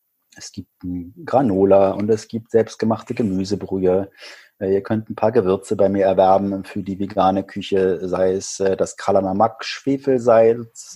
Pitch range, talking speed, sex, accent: 95-115 Hz, 130 wpm, male, German